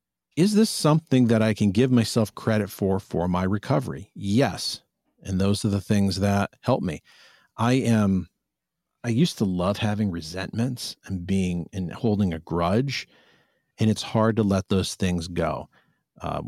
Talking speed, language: 165 wpm, English